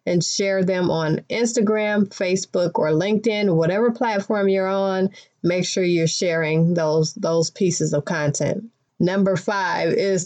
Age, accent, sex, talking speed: 30-49, American, female, 140 wpm